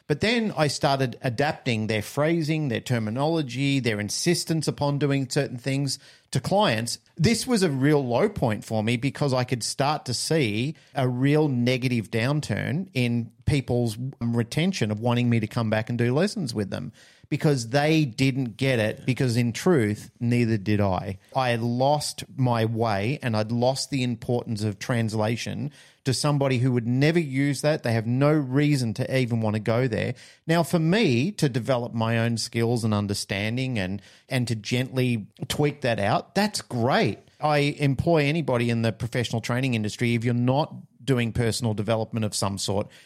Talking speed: 175 wpm